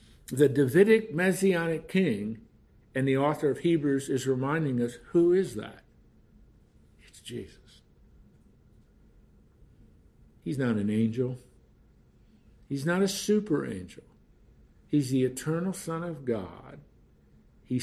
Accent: American